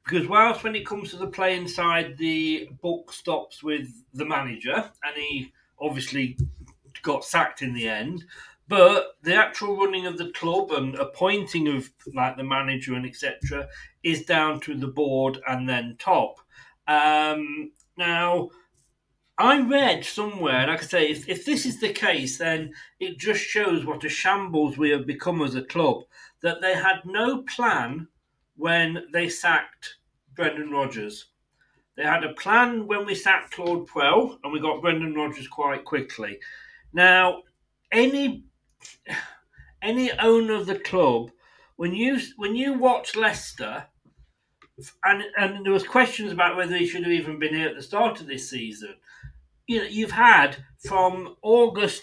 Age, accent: 40-59, British